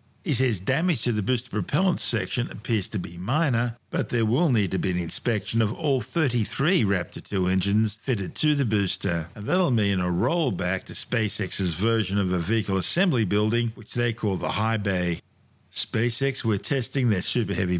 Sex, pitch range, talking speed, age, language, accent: male, 105-130 Hz, 185 wpm, 50-69, English, Australian